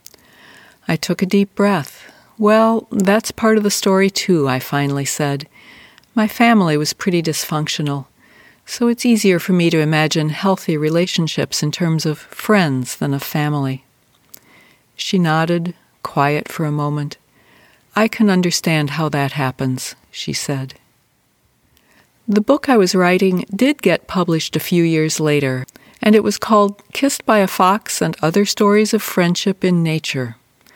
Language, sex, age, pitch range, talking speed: English, female, 60-79, 150-205 Hz, 150 wpm